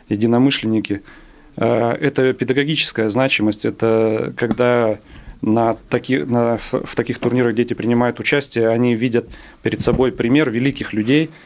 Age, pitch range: 30-49, 110-130 Hz